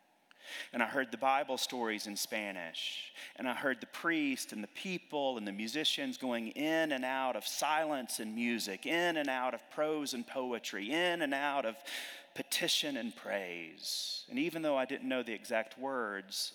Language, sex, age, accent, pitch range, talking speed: English, male, 30-49, American, 105-130 Hz, 180 wpm